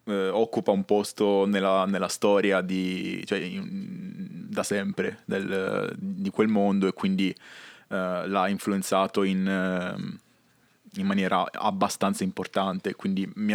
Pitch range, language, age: 95-110 Hz, Italian, 20-39